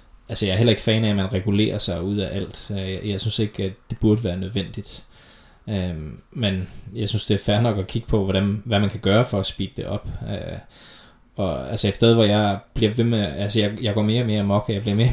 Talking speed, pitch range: 240 wpm, 100-115 Hz